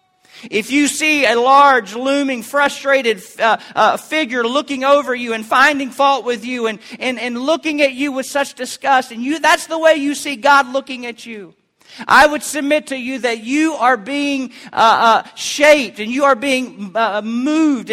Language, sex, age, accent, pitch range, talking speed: English, male, 40-59, American, 230-300 Hz, 185 wpm